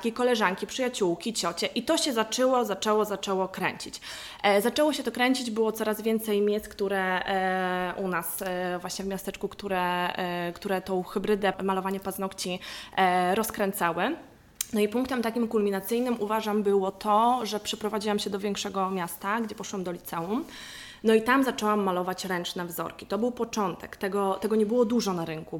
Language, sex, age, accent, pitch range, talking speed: Polish, female, 20-39, native, 190-220 Hz, 155 wpm